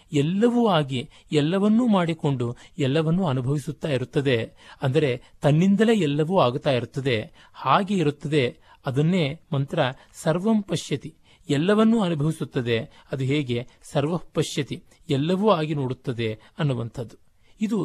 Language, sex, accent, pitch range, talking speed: Kannada, male, native, 125-165 Hz, 95 wpm